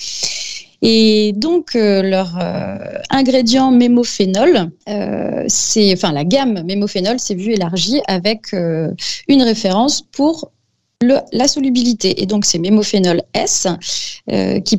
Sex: female